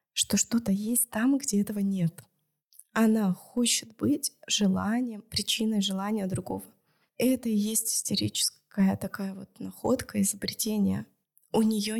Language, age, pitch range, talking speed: Russian, 20-39, 195-245 Hz, 120 wpm